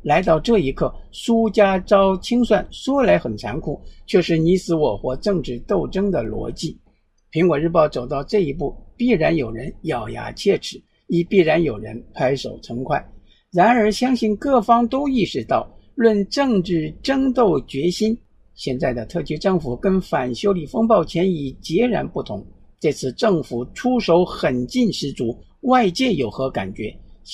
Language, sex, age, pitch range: Chinese, male, 50-69, 140-215 Hz